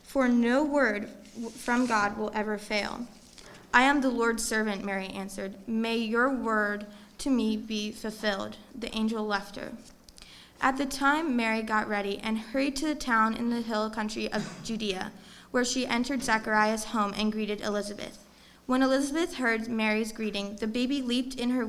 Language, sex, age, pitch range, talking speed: English, female, 20-39, 220-260 Hz, 170 wpm